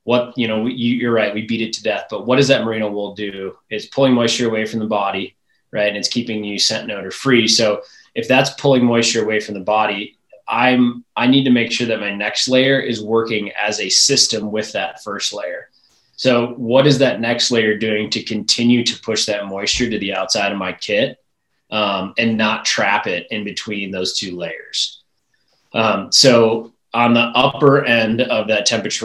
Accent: American